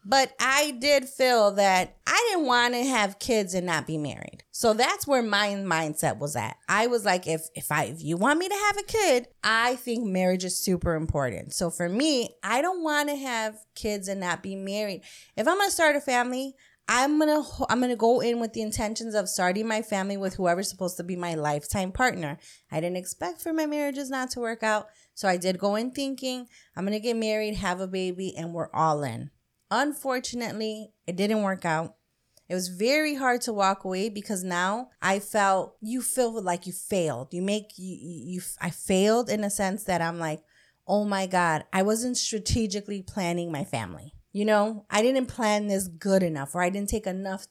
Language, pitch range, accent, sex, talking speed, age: English, 180-245 Hz, American, female, 215 wpm, 30-49